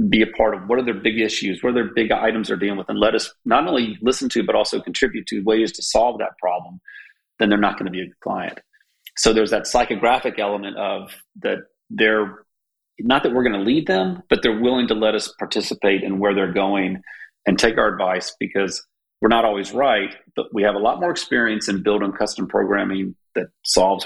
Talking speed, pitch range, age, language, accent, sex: 225 wpm, 100-110 Hz, 40-59, English, American, male